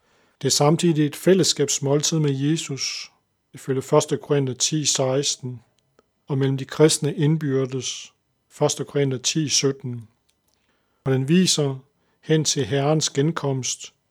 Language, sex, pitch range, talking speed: Danish, male, 135-155 Hz, 120 wpm